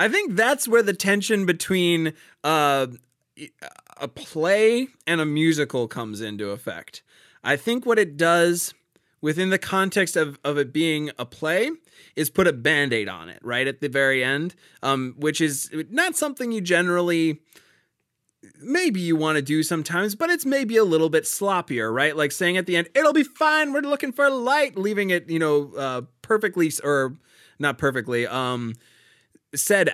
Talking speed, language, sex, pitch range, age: 170 wpm, English, male, 135-180 Hz, 20-39